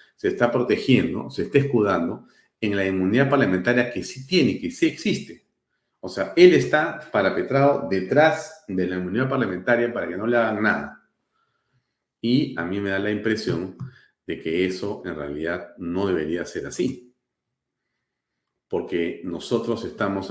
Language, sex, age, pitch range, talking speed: Spanish, male, 40-59, 95-140 Hz, 150 wpm